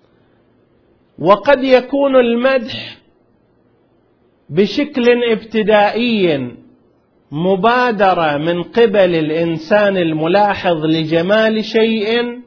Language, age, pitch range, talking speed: Arabic, 40-59, 170-225 Hz, 60 wpm